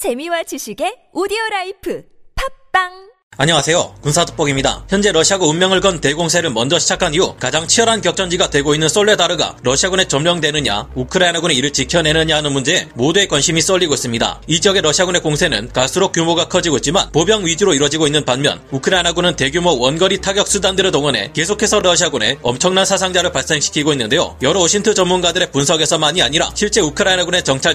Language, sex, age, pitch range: Korean, male, 30-49, 150-190 Hz